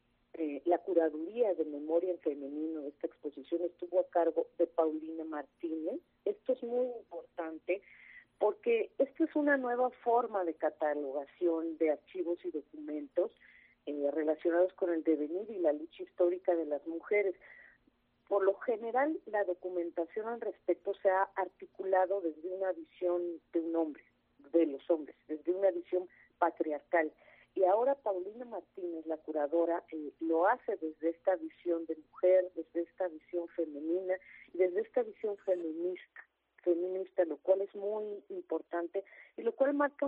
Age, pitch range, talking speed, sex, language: 40-59, 165-200 Hz, 150 wpm, female, Spanish